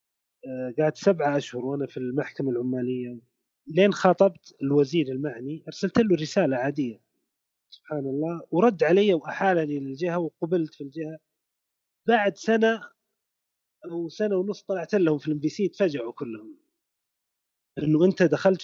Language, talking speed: Arabic, 120 wpm